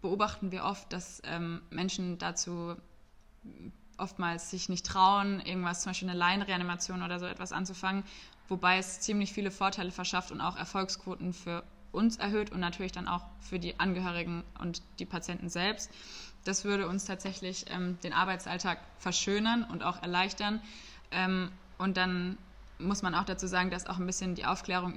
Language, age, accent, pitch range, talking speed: German, 20-39, German, 175-200 Hz, 165 wpm